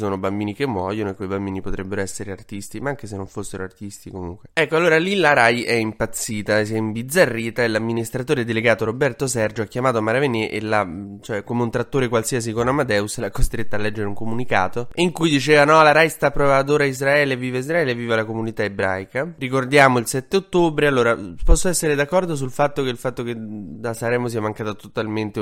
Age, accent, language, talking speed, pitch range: 20-39, native, Italian, 205 wpm, 110-140 Hz